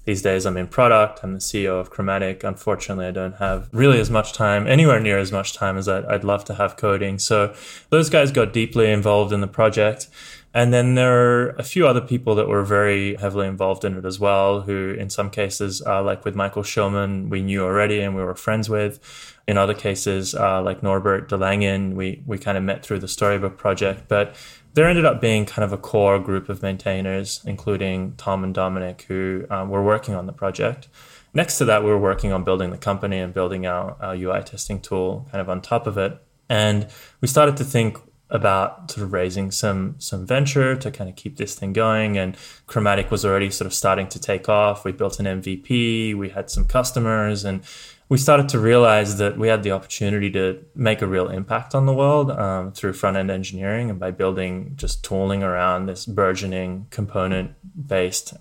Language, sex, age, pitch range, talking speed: English, male, 20-39, 95-110 Hz, 210 wpm